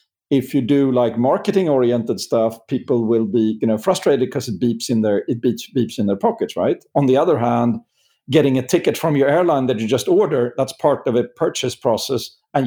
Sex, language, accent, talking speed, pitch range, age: male, English, Swedish, 205 wpm, 115-140 Hz, 50-69